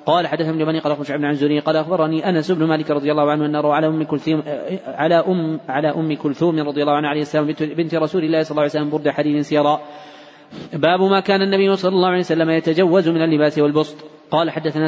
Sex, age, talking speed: male, 20-39, 170 wpm